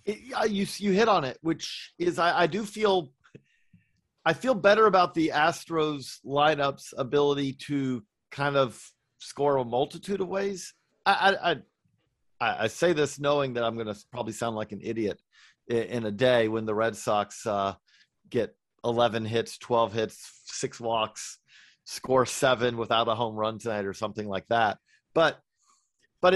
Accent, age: American, 40-59